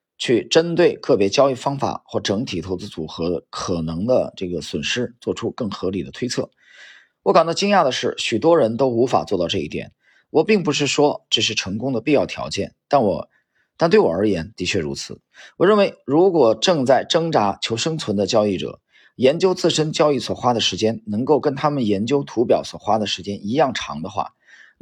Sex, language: male, Chinese